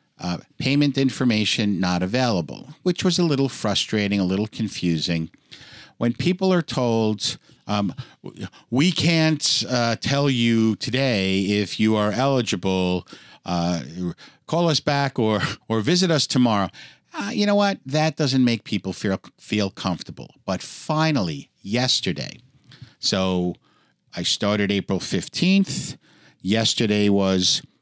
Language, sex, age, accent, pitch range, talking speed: English, male, 50-69, American, 100-140 Hz, 125 wpm